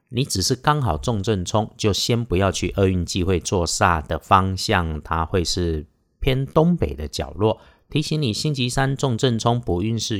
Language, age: Chinese, 50-69